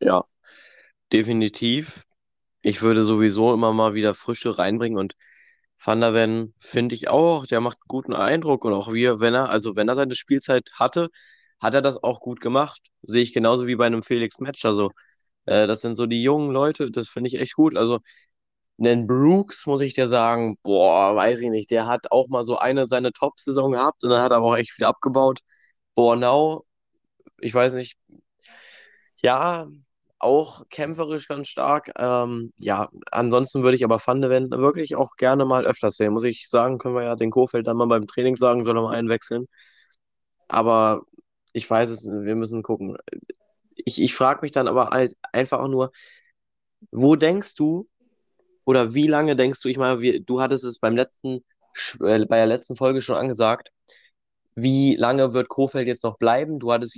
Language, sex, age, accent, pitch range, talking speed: German, male, 20-39, German, 115-135 Hz, 185 wpm